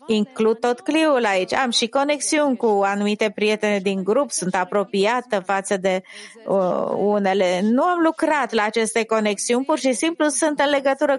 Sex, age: female, 30-49